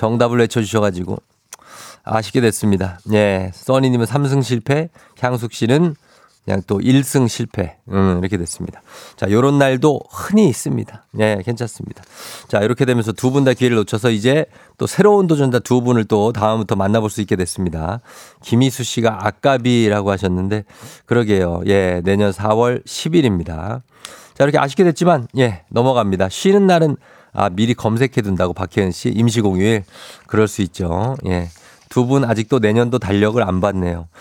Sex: male